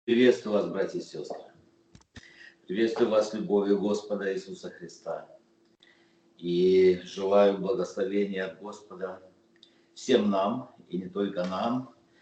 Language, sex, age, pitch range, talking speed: Russian, male, 50-69, 95-125 Hz, 110 wpm